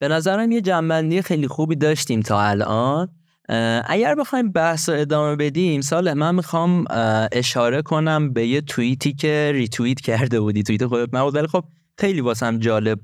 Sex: male